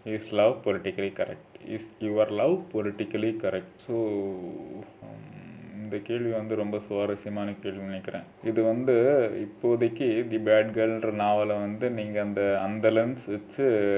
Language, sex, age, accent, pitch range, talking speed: Tamil, male, 20-39, native, 100-115 Hz, 130 wpm